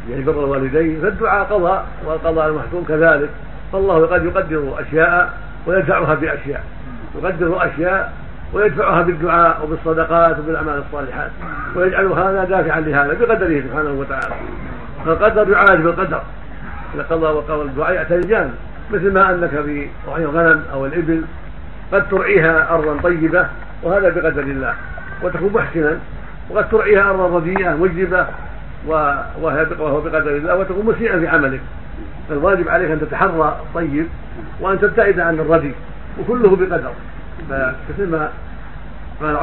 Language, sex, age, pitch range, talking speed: Arabic, male, 50-69, 145-180 Hz, 115 wpm